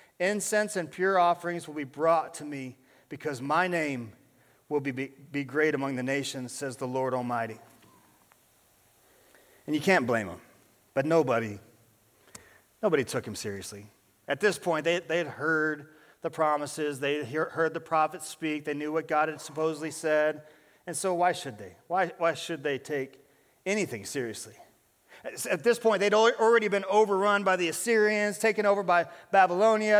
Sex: male